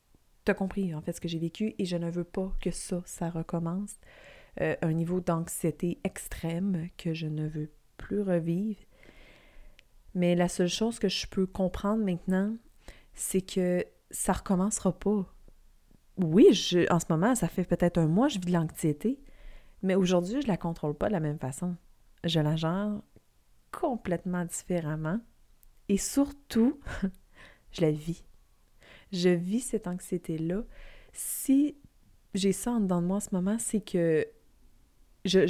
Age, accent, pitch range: 30-49, Canadian, 170-210 Hz